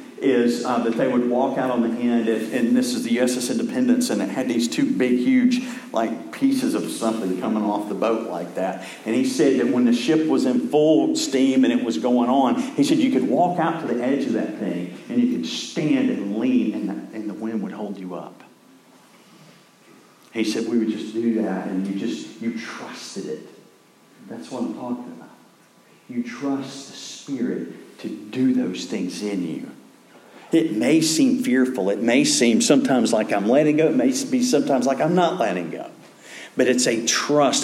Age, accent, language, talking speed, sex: 50-69, American, English, 205 wpm, male